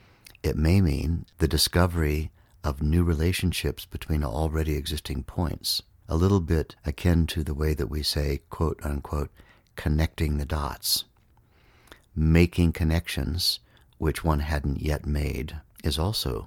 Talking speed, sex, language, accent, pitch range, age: 130 wpm, male, English, American, 75-90 Hz, 60-79